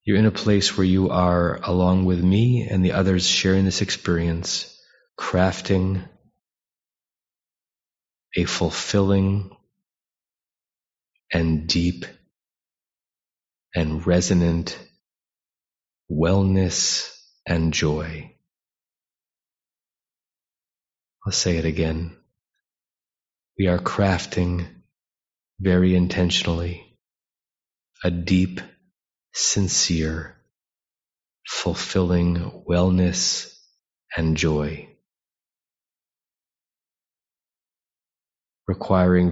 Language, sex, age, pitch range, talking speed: English, male, 30-49, 85-95 Hz, 65 wpm